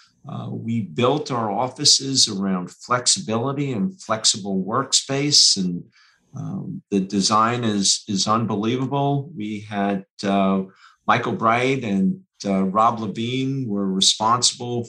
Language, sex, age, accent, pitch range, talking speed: English, male, 50-69, American, 100-140 Hz, 115 wpm